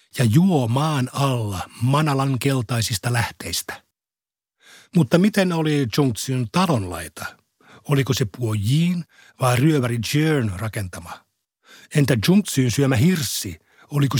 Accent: native